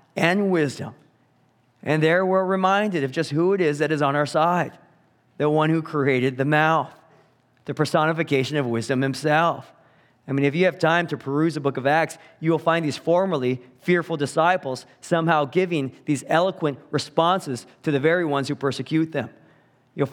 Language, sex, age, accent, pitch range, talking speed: English, male, 40-59, American, 145-175 Hz, 175 wpm